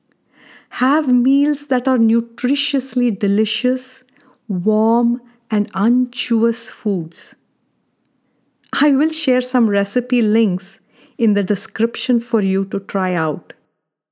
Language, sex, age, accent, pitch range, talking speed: English, female, 50-69, Indian, 210-260 Hz, 100 wpm